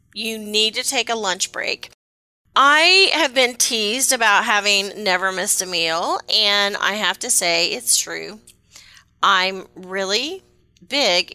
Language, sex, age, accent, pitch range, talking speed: English, female, 30-49, American, 185-255 Hz, 145 wpm